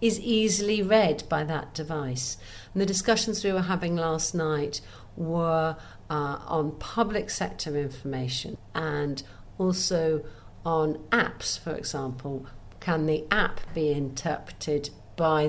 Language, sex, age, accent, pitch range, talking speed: English, female, 50-69, British, 145-170 Hz, 120 wpm